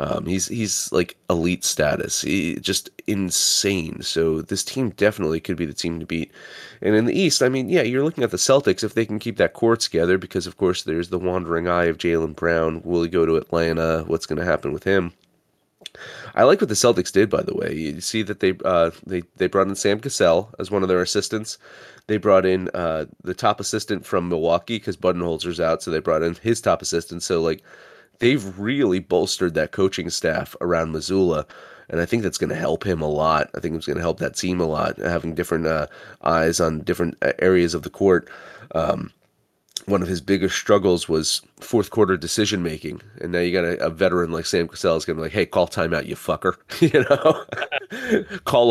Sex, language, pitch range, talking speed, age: male, English, 85-100 Hz, 220 wpm, 30-49